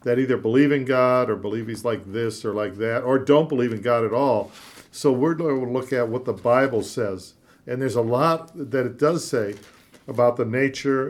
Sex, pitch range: male, 120-145 Hz